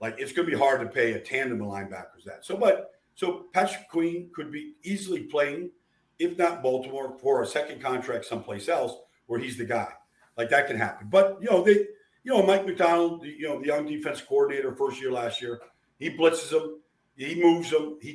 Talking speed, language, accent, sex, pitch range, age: 210 wpm, English, American, male, 125-175 Hz, 50-69